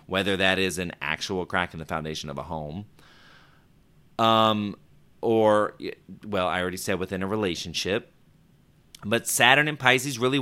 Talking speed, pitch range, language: 150 wpm, 90-110 Hz, English